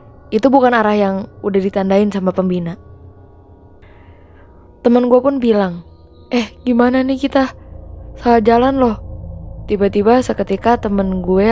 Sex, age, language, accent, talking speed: female, 20-39, Indonesian, native, 120 wpm